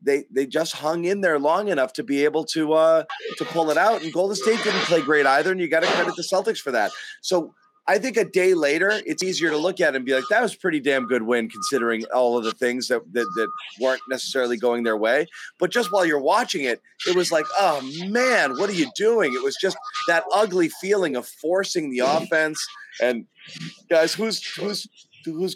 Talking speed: 230 wpm